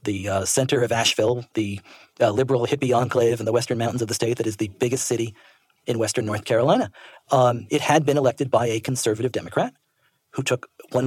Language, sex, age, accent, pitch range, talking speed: English, male, 40-59, American, 120-155 Hz, 205 wpm